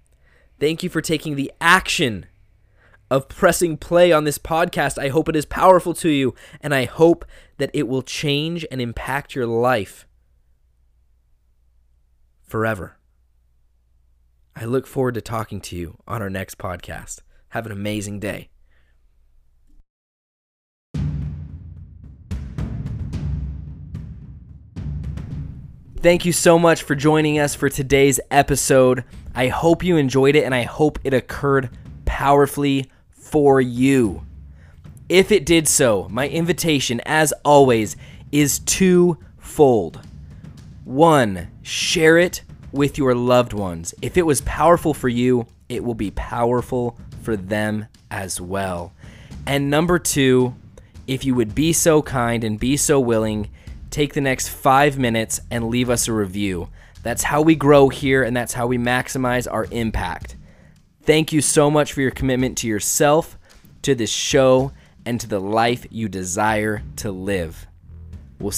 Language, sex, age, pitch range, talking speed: English, male, 20-39, 95-140 Hz, 135 wpm